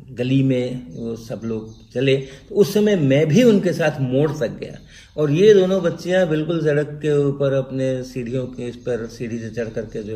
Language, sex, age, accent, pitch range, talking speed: Hindi, male, 50-69, native, 115-140 Hz, 200 wpm